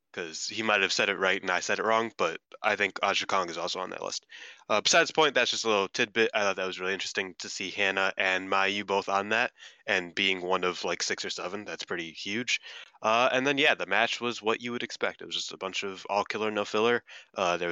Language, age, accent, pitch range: English, 20-39, American, 95-120 Hz